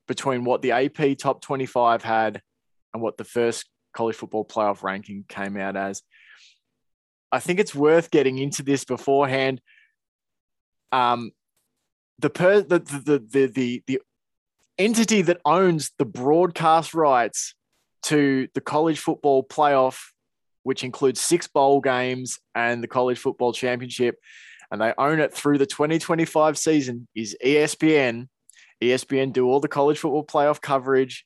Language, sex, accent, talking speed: English, male, Australian, 140 wpm